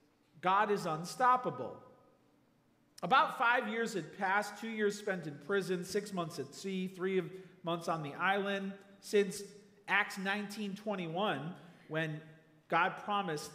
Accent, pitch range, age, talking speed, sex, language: American, 155-205 Hz, 40-59, 125 wpm, male, English